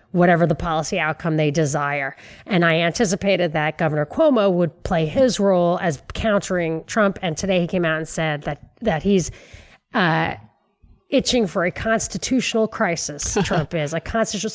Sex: female